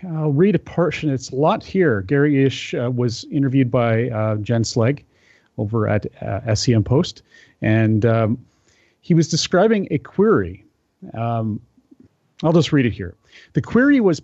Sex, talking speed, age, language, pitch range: male, 160 wpm, 40-59, English, 110-155 Hz